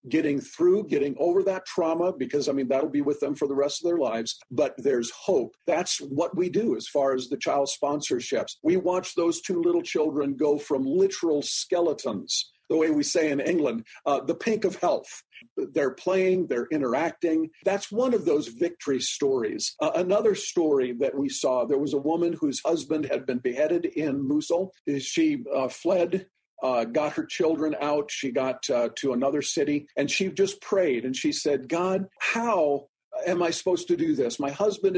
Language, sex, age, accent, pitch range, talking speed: English, male, 50-69, American, 145-205 Hz, 190 wpm